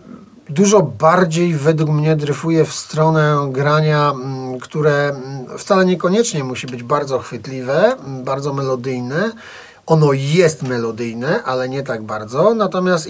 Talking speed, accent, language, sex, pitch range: 115 wpm, native, Polish, male, 130-160 Hz